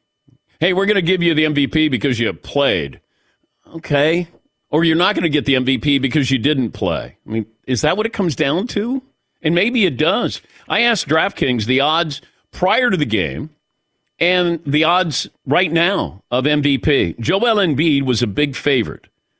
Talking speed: 185 wpm